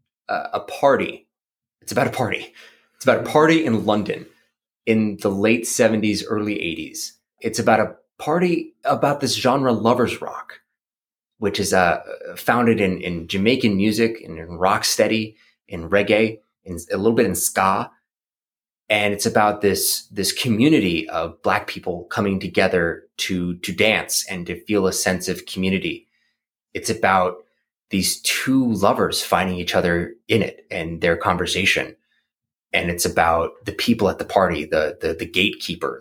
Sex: male